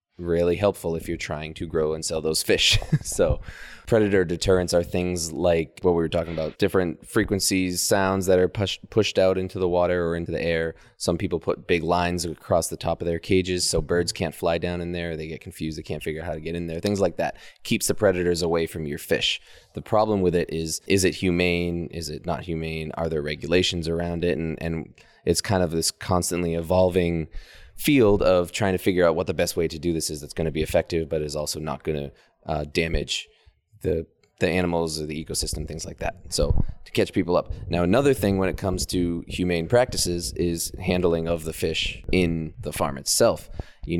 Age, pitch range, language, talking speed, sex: 20-39, 80-90 Hz, English, 220 wpm, male